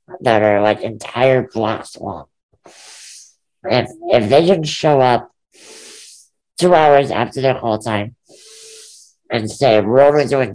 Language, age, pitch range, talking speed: English, 60-79, 110-150 Hz, 130 wpm